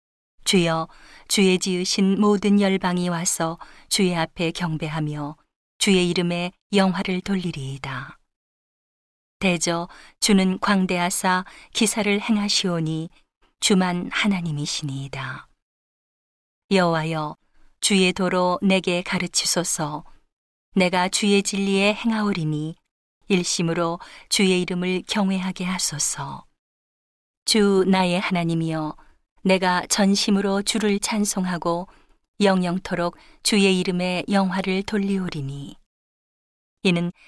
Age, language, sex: 40-59, Korean, female